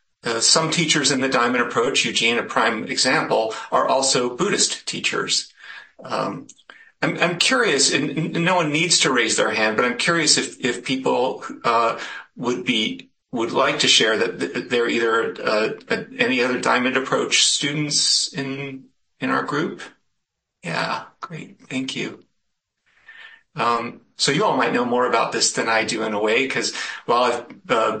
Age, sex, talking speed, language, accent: 40-59, male, 170 wpm, English, American